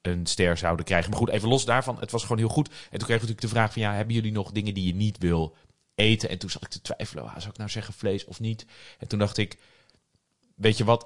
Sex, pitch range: male, 90-110 Hz